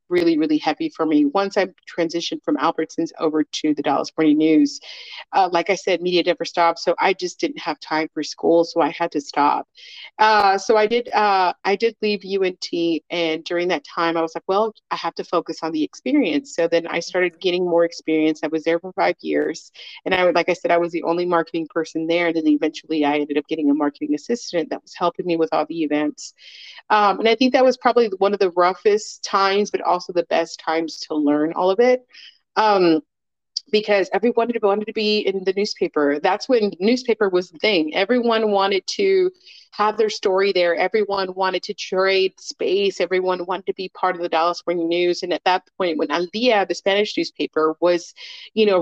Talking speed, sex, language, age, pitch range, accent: 215 wpm, female, English, 30-49, 165-210 Hz, American